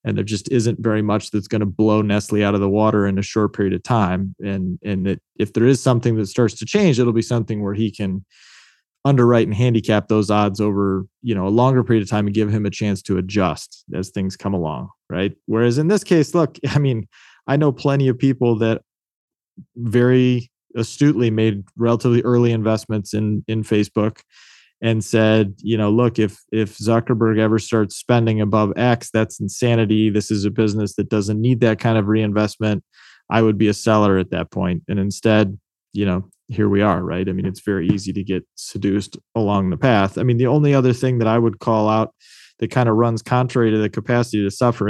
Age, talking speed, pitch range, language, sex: 20-39, 215 wpm, 100-120 Hz, English, male